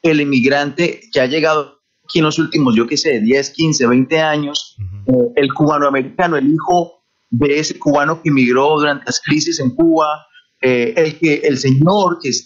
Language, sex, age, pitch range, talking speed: Spanish, male, 30-49, 145-185 Hz, 190 wpm